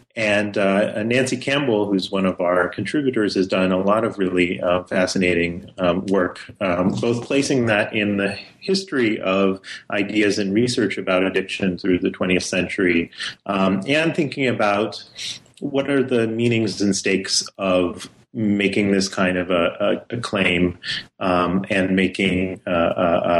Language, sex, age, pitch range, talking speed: English, male, 30-49, 90-110 Hz, 150 wpm